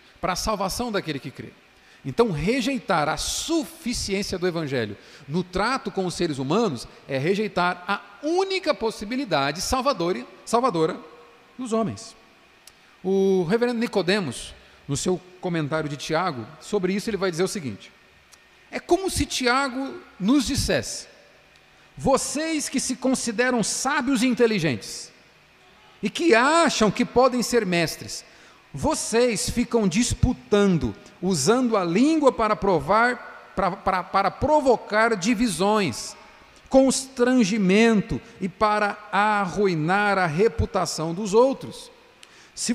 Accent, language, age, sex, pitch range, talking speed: Brazilian, Portuguese, 40-59, male, 185-250 Hz, 115 wpm